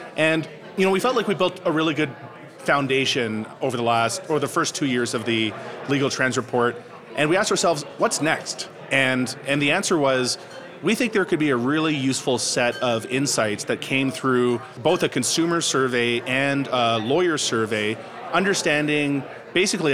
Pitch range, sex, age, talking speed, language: 120-145 Hz, male, 30-49, 180 wpm, English